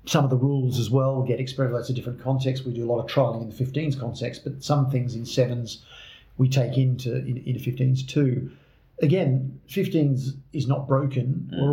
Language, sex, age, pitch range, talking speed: English, male, 50-69, 120-135 Hz, 200 wpm